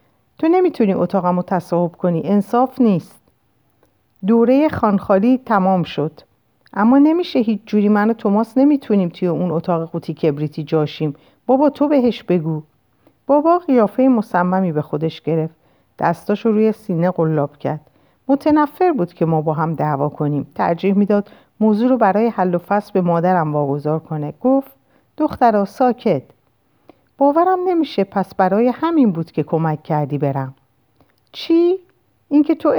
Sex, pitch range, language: female, 160-230 Hz, Persian